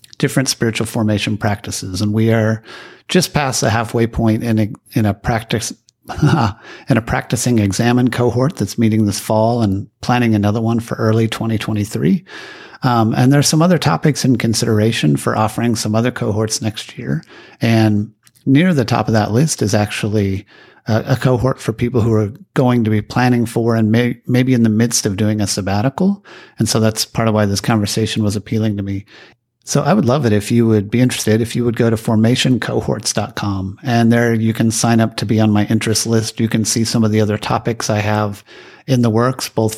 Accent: American